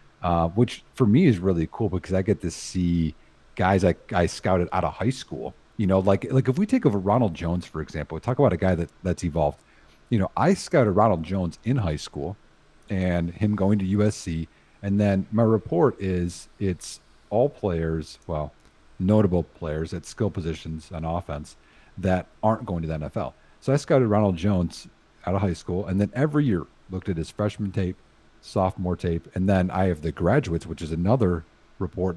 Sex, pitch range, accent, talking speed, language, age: male, 85-110 Hz, American, 195 wpm, English, 40-59